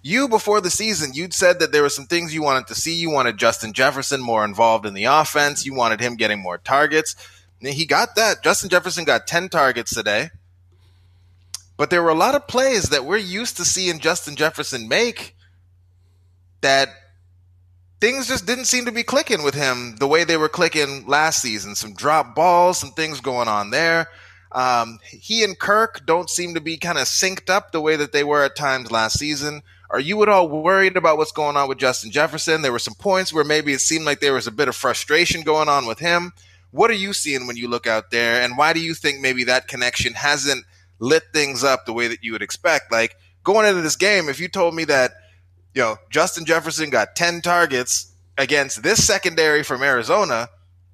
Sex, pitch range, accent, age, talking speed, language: male, 115-170 Hz, American, 20-39, 210 wpm, English